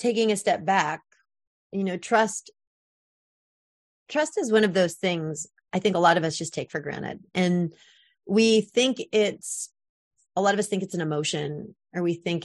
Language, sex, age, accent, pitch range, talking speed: English, female, 30-49, American, 165-205 Hz, 185 wpm